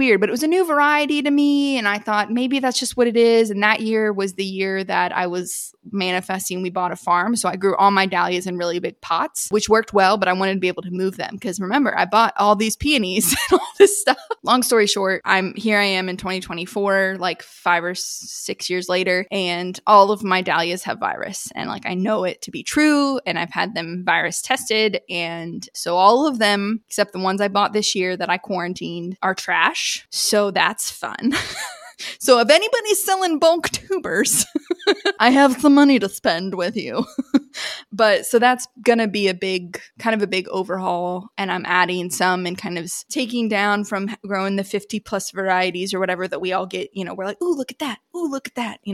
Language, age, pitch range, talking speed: English, 20-39, 185-235 Hz, 220 wpm